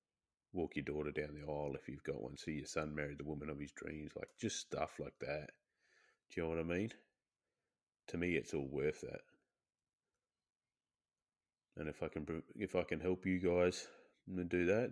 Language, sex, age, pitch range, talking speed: English, male, 30-49, 80-95 Hz, 195 wpm